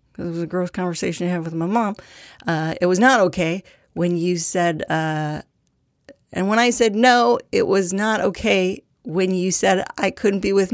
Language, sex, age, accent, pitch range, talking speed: English, female, 40-59, American, 175-210 Hz, 200 wpm